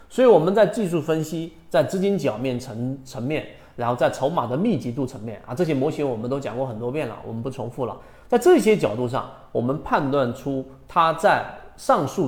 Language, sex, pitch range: Chinese, male, 125-175 Hz